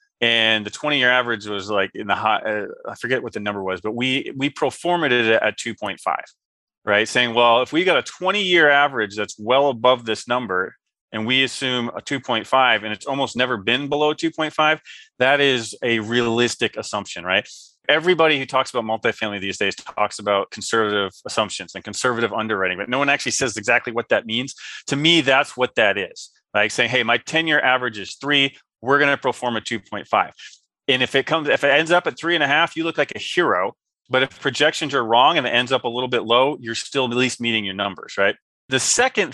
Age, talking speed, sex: 30-49, 215 wpm, male